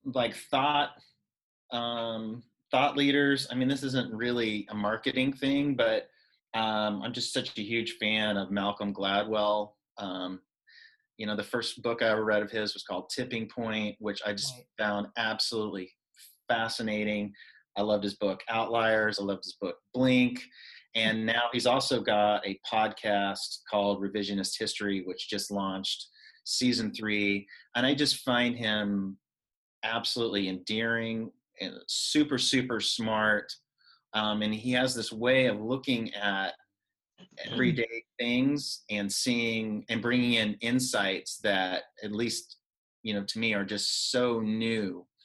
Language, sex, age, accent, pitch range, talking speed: English, male, 30-49, American, 105-120 Hz, 145 wpm